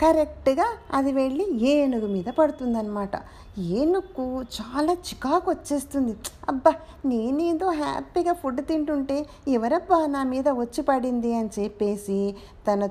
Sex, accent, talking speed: female, native, 110 wpm